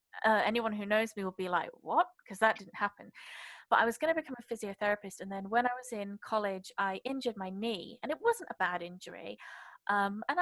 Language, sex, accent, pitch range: English, female, British, 190-245 Hz